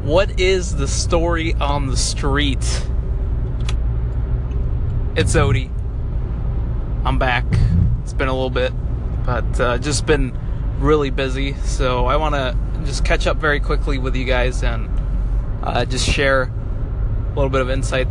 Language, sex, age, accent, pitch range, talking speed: English, male, 20-39, American, 110-130 Hz, 145 wpm